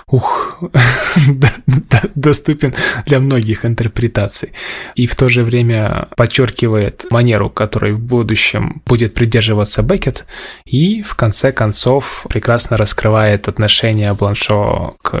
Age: 20-39